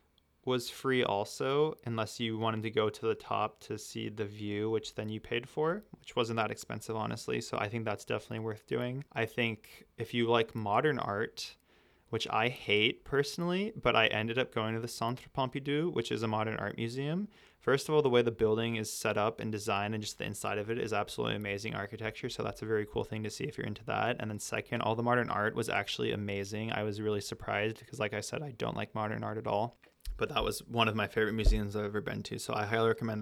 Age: 20-39